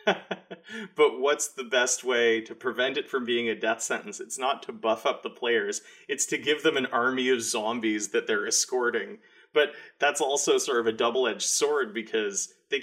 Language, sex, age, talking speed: English, male, 30-49, 190 wpm